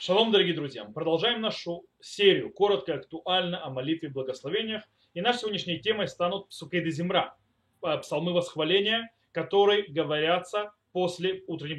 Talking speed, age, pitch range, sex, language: 125 wpm, 30-49, 160-240 Hz, male, Russian